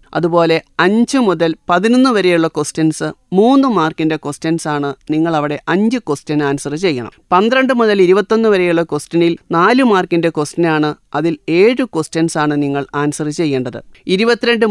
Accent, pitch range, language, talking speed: native, 155-195 Hz, Malayalam, 135 wpm